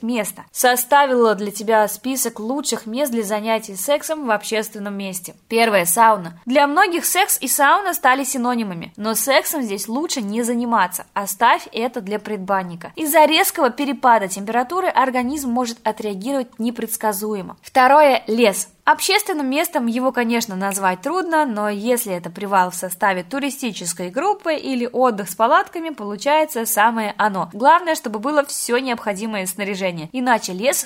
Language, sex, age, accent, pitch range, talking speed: Russian, female, 20-39, native, 205-280 Hz, 140 wpm